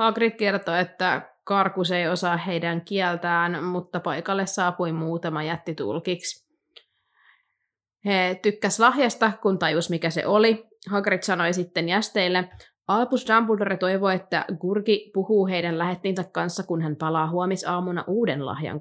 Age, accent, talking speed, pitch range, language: 20-39, native, 130 wpm, 165-205 Hz, Finnish